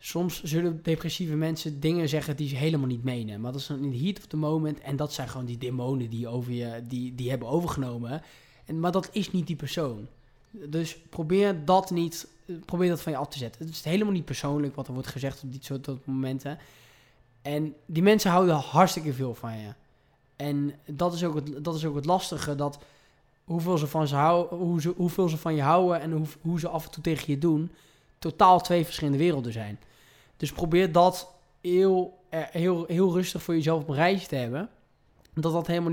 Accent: Dutch